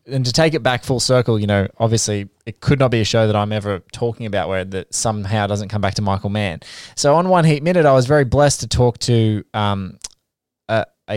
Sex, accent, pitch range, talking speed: male, Australian, 110-130 Hz, 235 wpm